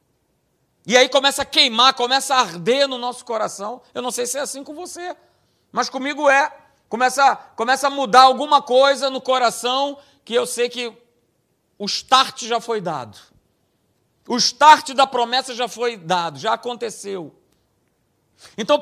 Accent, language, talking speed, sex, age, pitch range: Brazilian, Portuguese, 155 wpm, male, 50-69, 210-275 Hz